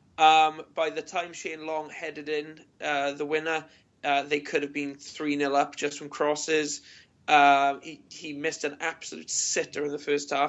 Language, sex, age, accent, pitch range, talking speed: English, male, 20-39, British, 145-155 Hz, 185 wpm